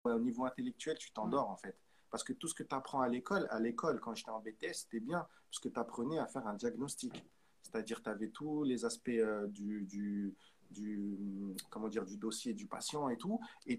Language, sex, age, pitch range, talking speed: French, male, 40-59, 110-160 Hz, 220 wpm